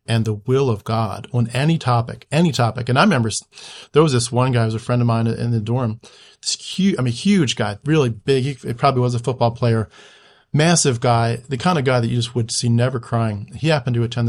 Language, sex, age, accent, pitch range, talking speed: English, male, 40-59, American, 115-130 Hz, 245 wpm